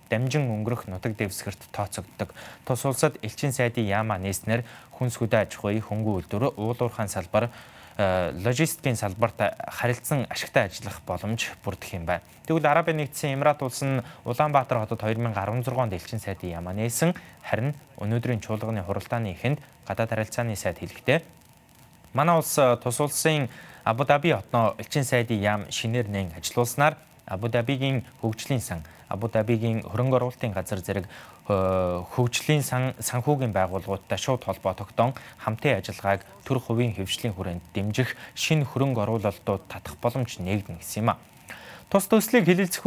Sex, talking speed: male, 105 wpm